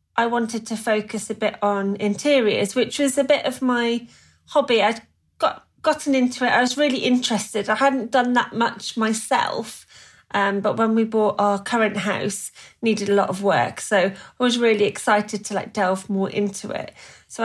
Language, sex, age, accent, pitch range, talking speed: English, female, 30-49, British, 200-235 Hz, 190 wpm